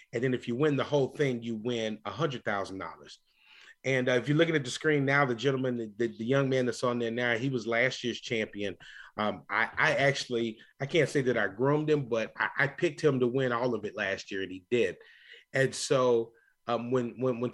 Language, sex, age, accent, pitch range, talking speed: English, male, 30-49, American, 120-150 Hz, 245 wpm